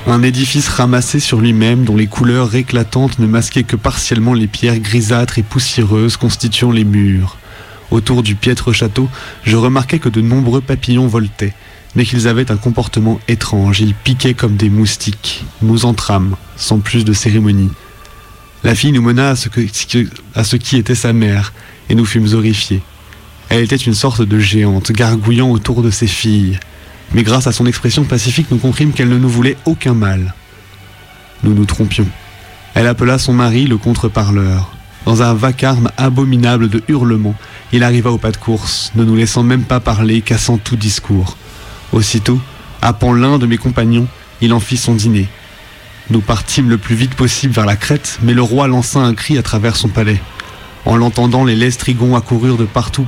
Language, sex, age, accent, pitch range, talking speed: French, male, 20-39, French, 105-125 Hz, 175 wpm